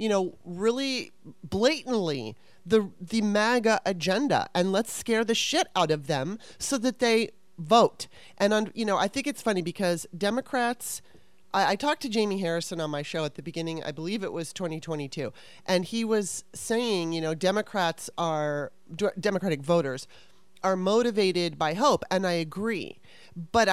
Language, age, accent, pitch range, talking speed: English, 30-49, American, 160-215 Hz, 160 wpm